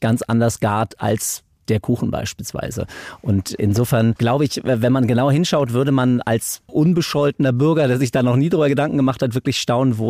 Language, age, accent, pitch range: German, 30-49, German, 110-135 Hz